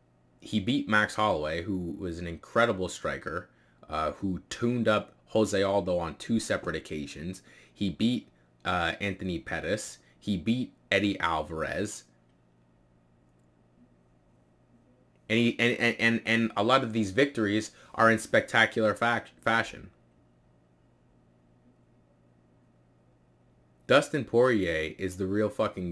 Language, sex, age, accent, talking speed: English, male, 20-39, American, 115 wpm